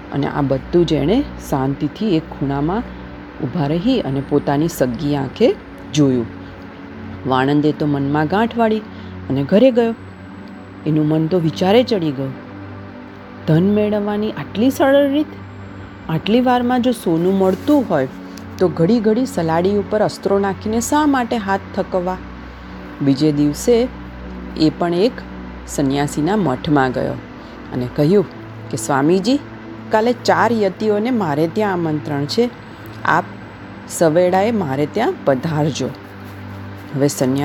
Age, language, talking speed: 40-59, Gujarati, 100 wpm